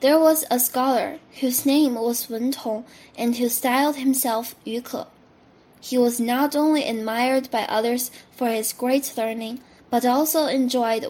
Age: 10-29